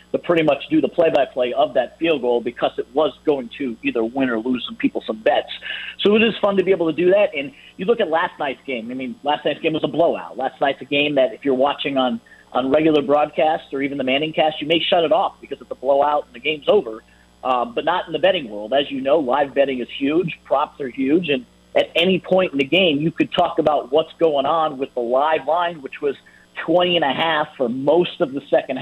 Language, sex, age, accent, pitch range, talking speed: English, male, 50-69, American, 125-165 Hz, 250 wpm